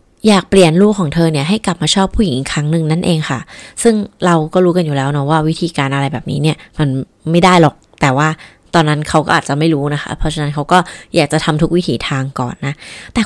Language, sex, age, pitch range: Thai, female, 20-39, 150-195 Hz